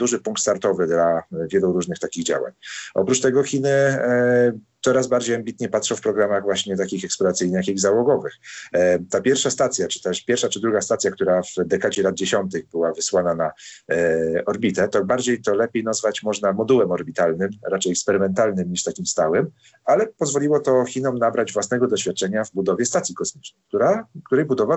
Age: 40-59